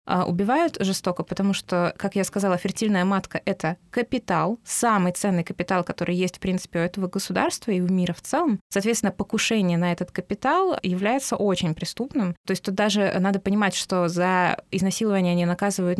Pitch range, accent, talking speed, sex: 185-215 Hz, native, 175 wpm, female